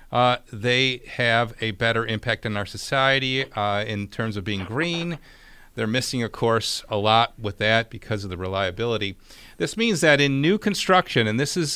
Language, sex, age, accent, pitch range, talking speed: English, male, 40-59, American, 110-155 Hz, 185 wpm